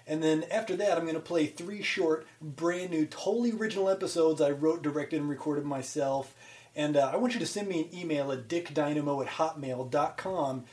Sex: male